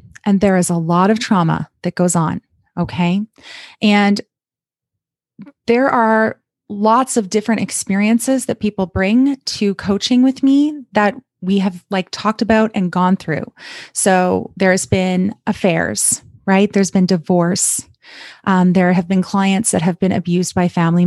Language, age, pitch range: English, 30-49, 180-220 Hz